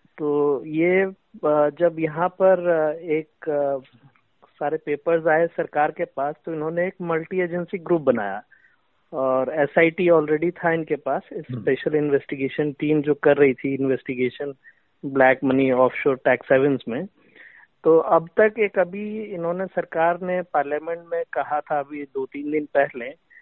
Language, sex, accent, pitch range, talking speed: Hindi, male, native, 145-185 Hz, 145 wpm